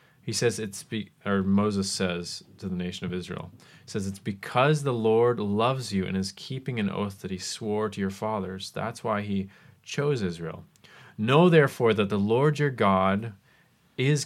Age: 30-49